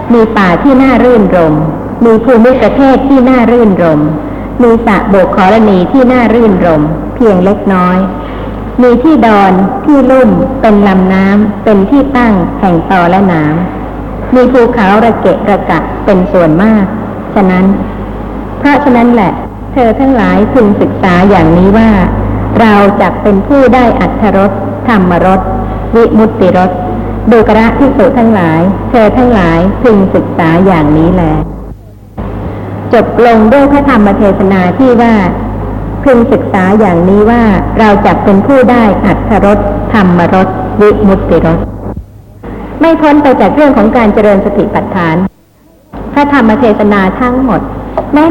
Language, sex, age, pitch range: Thai, male, 60-79, 185-245 Hz